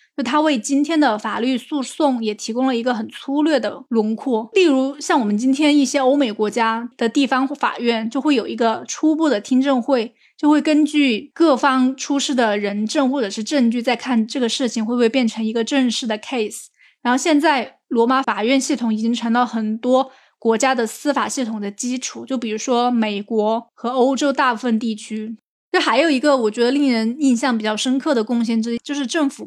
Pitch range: 225-275 Hz